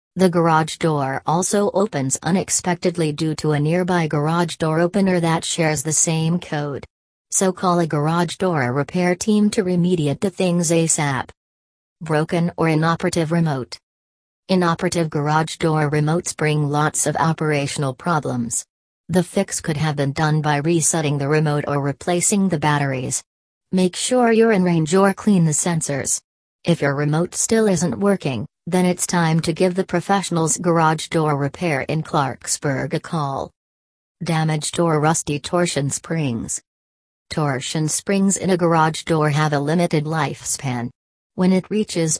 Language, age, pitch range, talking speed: English, 40-59, 145-175 Hz, 150 wpm